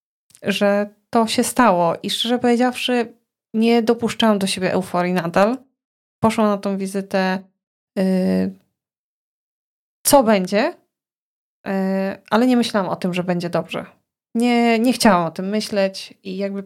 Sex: female